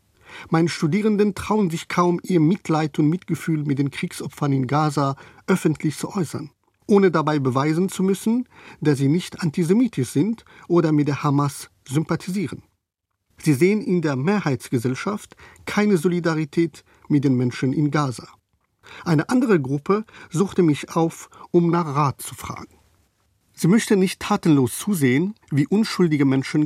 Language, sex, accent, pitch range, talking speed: German, male, German, 140-180 Hz, 140 wpm